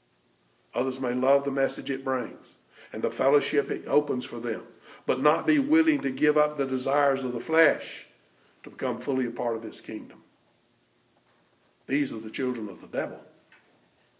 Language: English